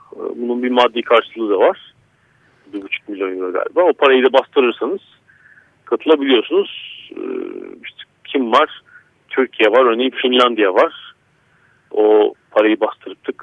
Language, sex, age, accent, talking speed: Turkish, male, 50-69, native, 115 wpm